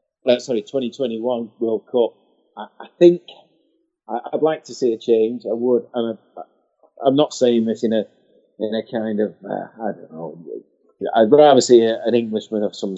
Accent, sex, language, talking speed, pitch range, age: British, male, English, 155 wpm, 110-135 Hz, 30-49